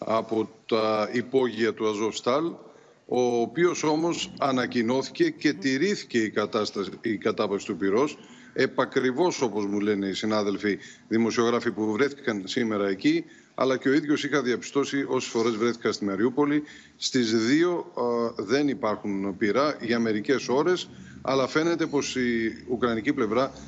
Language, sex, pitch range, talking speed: Greek, male, 110-140 Hz, 140 wpm